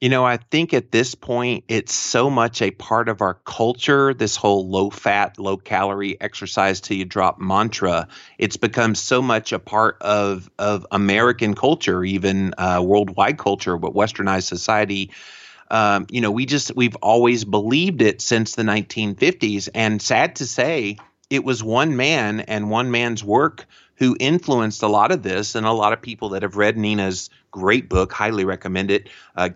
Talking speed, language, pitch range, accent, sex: 180 wpm, English, 95-115 Hz, American, male